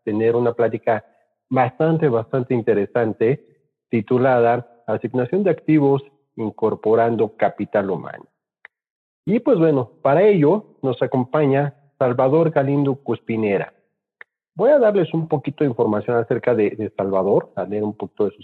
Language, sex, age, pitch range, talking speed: Spanish, male, 40-59, 115-145 Hz, 130 wpm